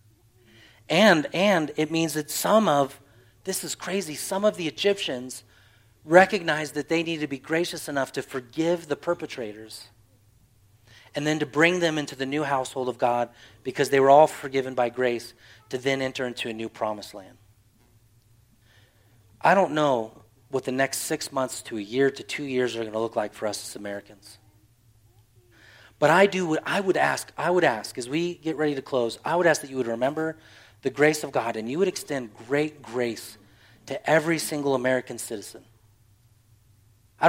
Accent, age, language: American, 30-49, English